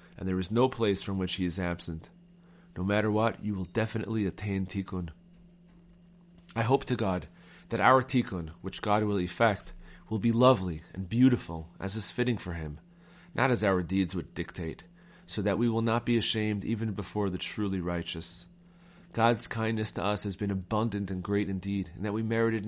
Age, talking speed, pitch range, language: 30-49, 190 wpm, 95-115 Hz, English